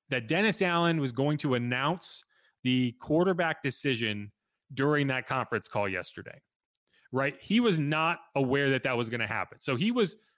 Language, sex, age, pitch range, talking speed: English, male, 30-49, 135-180 Hz, 170 wpm